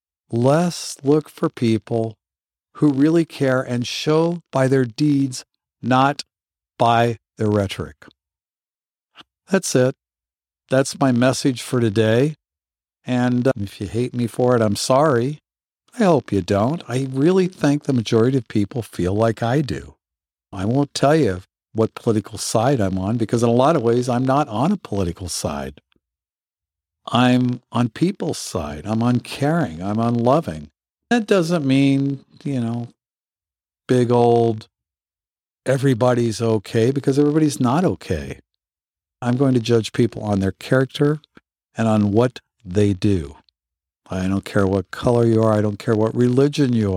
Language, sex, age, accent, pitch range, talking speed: English, male, 50-69, American, 100-135 Hz, 150 wpm